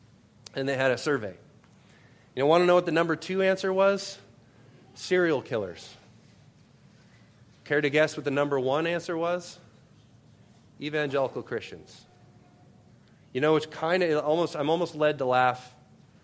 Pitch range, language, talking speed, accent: 120-160 Hz, English, 150 wpm, American